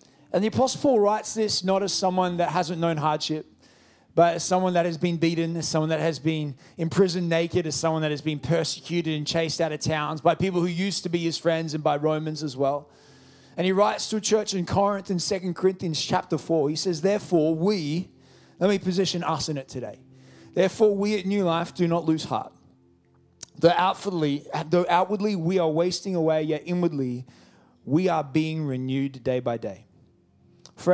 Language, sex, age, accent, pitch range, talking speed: English, male, 20-39, Australian, 140-180 Hz, 200 wpm